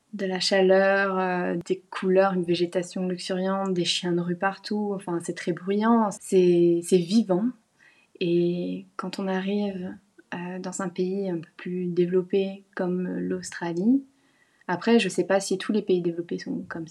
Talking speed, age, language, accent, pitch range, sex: 165 wpm, 20-39, French, French, 180-205 Hz, female